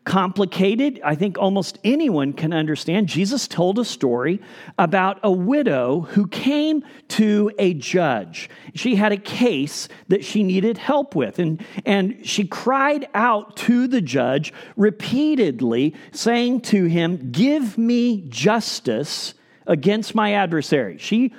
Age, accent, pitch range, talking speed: 40-59, American, 170-235 Hz, 130 wpm